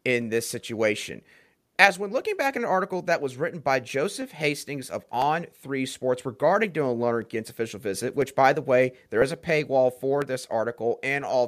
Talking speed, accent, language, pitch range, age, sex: 190 wpm, American, English, 135-195 Hz, 30-49, male